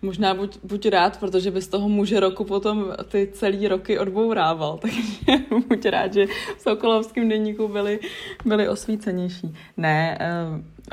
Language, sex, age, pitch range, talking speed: Czech, female, 20-39, 170-205 Hz, 150 wpm